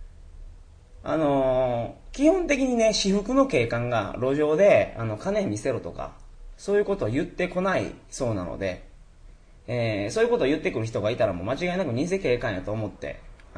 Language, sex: Japanese, male